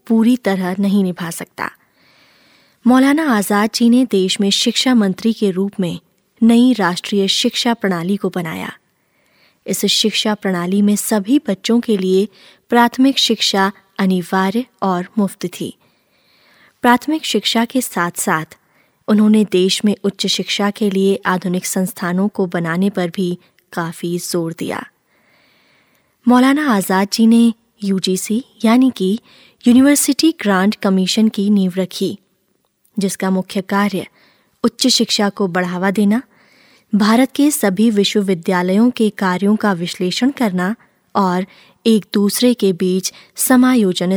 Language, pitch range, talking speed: Hindi, 190-225 Hz, 130 wpm